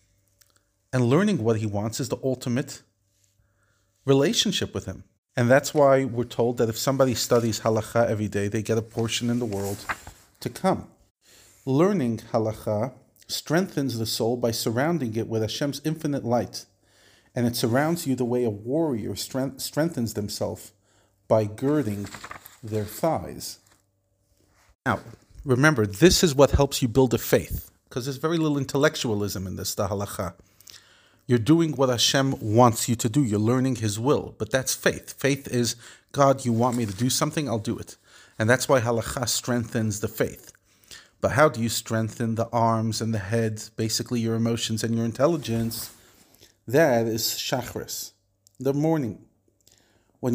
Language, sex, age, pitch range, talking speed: English, male, 40-59, 105-130 Hz, 160 wpm